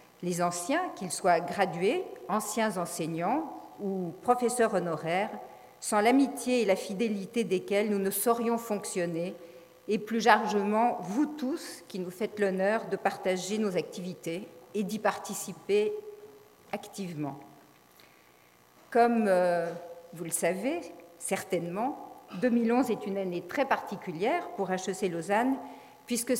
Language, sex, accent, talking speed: French, female, French, 120 wpm